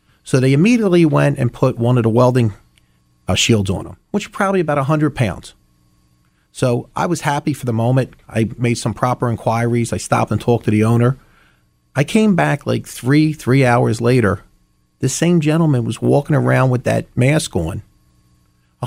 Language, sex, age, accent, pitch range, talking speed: English, male, 40-59, American, 110-155 Hz, 190 wpm